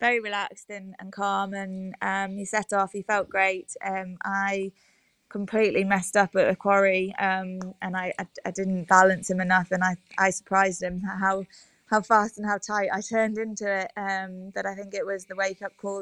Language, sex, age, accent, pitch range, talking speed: English, female, 20-39, British, 190-200 Hz, 200 wpm